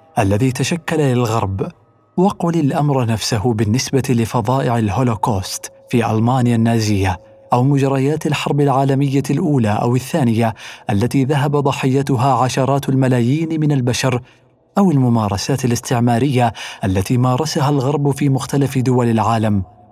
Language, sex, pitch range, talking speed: Arabic, male, 115-140 Hz, 110 wpm